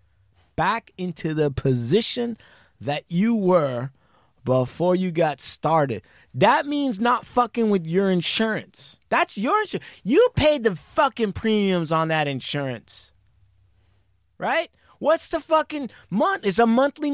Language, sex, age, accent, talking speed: English, male, 30-49, American, 130 wpm